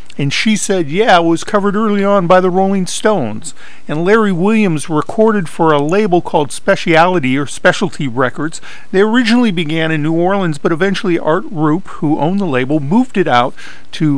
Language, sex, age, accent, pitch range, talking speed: English, male, 50-69, American, 140-190 Hz, 180 wpm